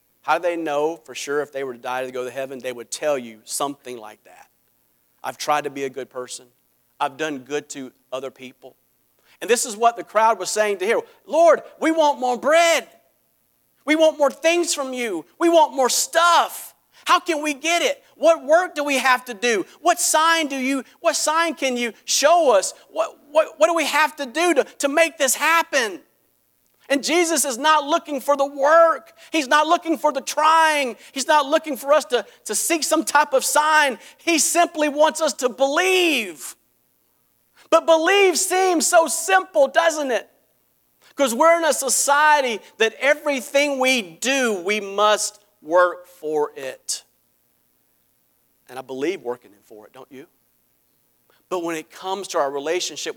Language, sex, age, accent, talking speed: English, male, 40-59, American, 185 wpm